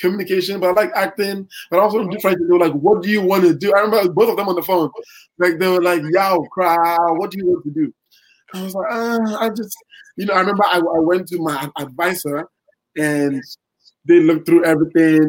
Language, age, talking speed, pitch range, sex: English, 20-39, 225 wpm, 150-200 Hz, male